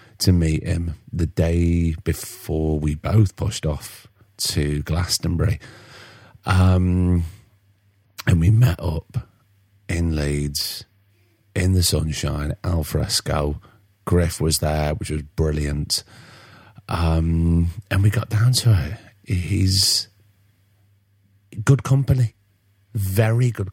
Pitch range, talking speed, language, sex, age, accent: 85-105 Hz, 105 wpm, English, male, 40-59, British